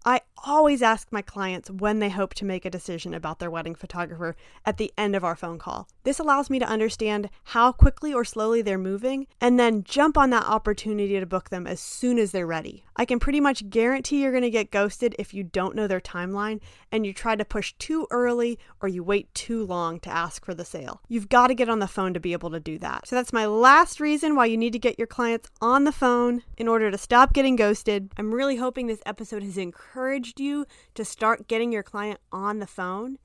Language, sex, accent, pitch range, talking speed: English, female, American, 190-240 Hz, 240 wpm